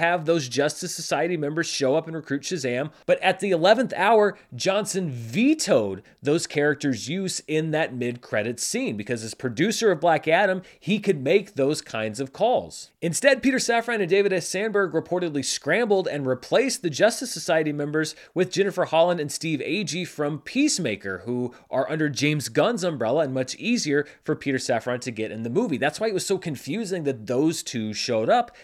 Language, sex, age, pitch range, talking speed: English, male, 30-49, 140-205 Hz, 185 wpm